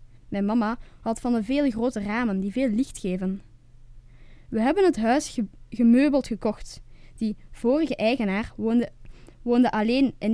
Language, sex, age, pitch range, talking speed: Dutch, female, 10-29, 195-245 Hz, 150 wpm